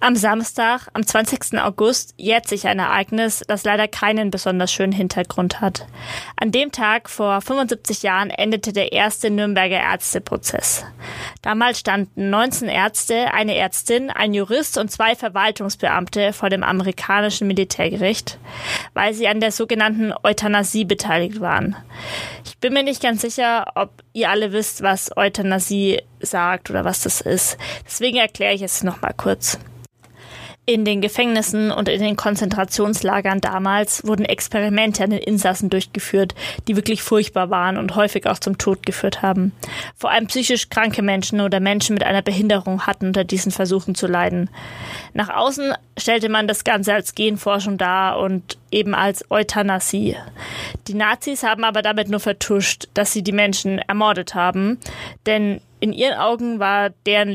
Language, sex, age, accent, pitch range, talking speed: German, female, 20-39, American, 195-220 Hz, 155 wpm